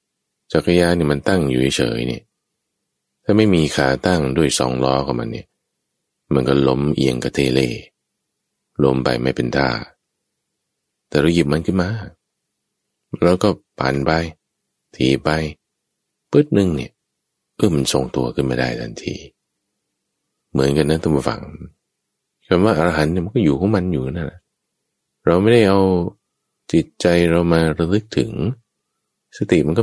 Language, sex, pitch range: English, male, 70-100 Hz